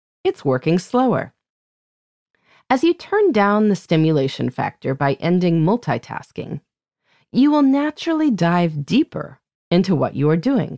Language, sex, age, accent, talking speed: English, female, 30-49, American, 130 wpm